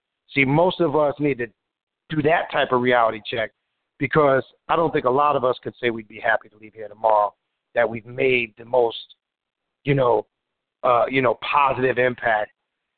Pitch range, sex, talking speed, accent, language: 120-150 Hz, male, 180 wpm, American, English